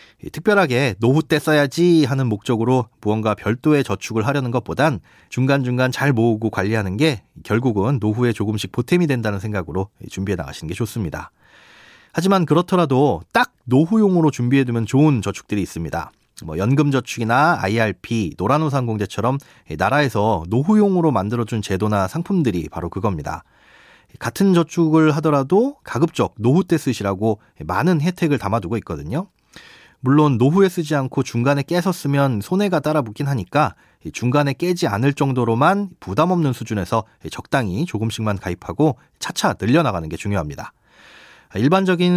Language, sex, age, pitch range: Korean, male, 30-49, 105-160 Hz